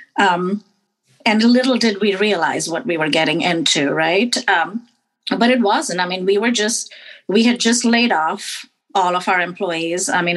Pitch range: 175-230 Hz